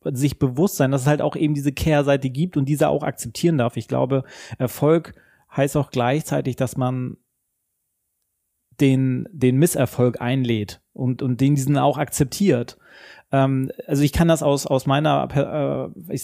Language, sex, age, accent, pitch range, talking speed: German, male, 30-49, German, 125-150 Hz, 165 wpm